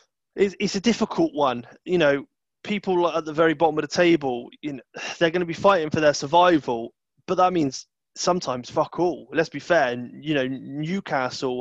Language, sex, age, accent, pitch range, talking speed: English, male, 20-39, British, 130-160 Hz, 185 wpm